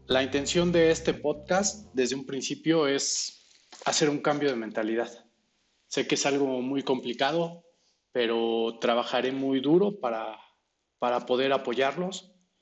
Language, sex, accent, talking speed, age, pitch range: Spanish, male, Mexican, 135 wpm, 40-59, 125-150 Hz